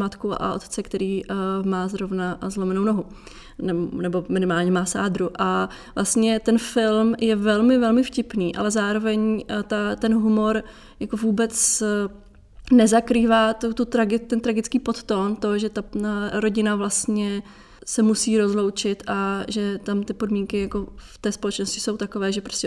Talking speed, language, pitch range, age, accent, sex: 155 wpm, Czech, 200-220 Hz, 20-39, native, female